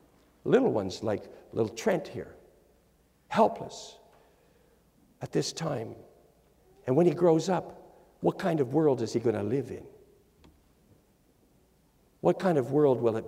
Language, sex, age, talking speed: English, male, 60-79, 140 wpm